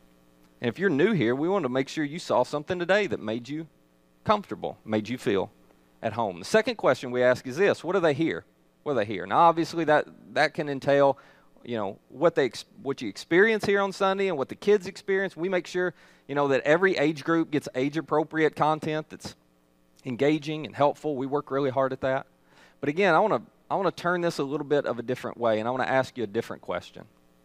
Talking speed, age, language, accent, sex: 235 wpm, 30-49, English, American, male